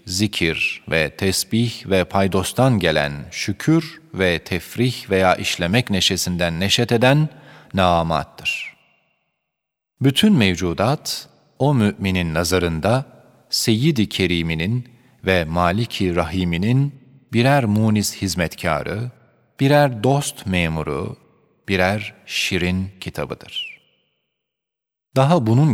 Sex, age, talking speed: male, 40-59, 85 wpm